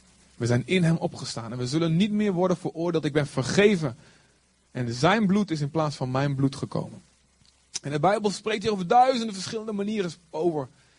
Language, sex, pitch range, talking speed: Dutch, male, 130-190 Hz, 190 wpm